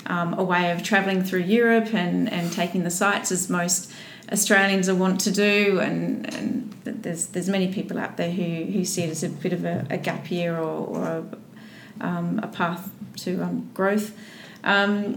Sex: female